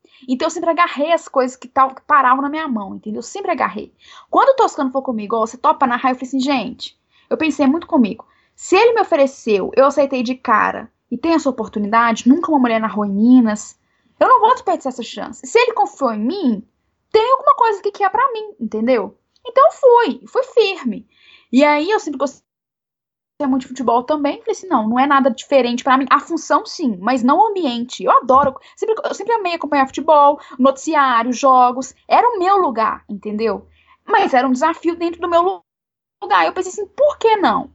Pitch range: 255-360 Hz